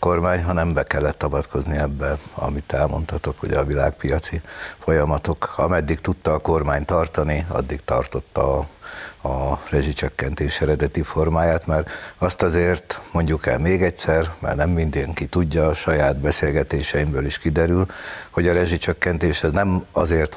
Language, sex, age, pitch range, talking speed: Hungarian, male, 60-79, 75-90 Hz, 140 wpm